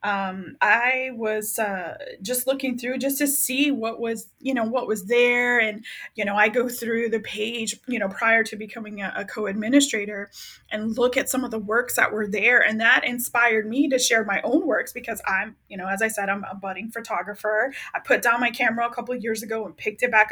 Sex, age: female, 20-39